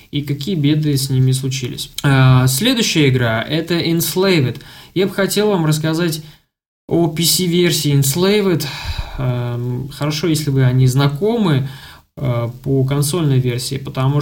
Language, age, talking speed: Russian, 20-39, 115 wpm